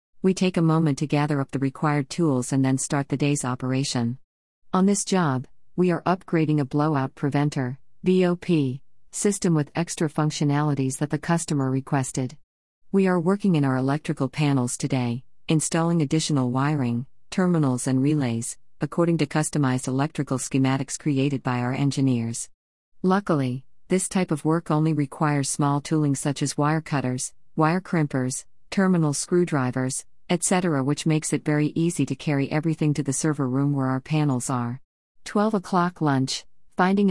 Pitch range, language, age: 135-165 Hz, English, 50-69